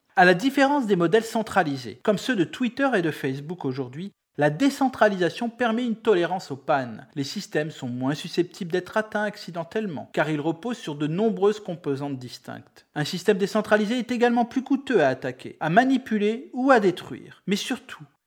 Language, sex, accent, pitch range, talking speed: Italian, male, French, 140-215 Hz, 175 wpm